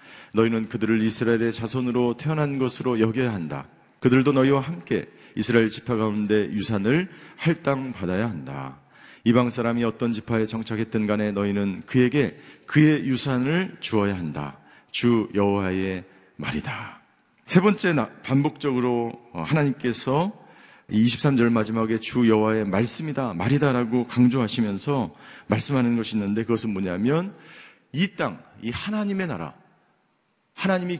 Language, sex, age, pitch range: Korean, male, 40-59, 115-160 Hz